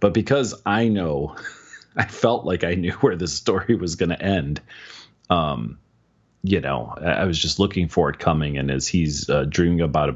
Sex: male